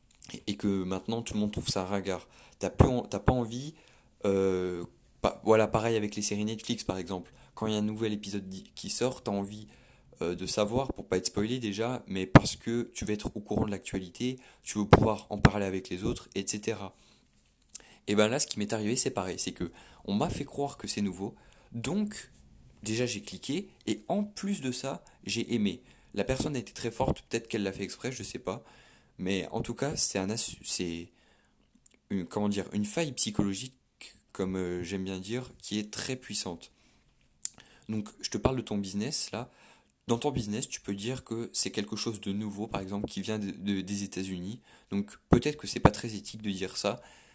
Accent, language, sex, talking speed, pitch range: French, French, male, 210 wpm, 95-115 Hz